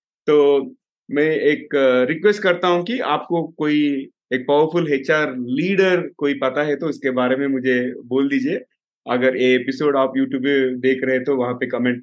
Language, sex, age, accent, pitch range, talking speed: Hindi, male, 30-49, native, 130-165 Hz, 175 wpm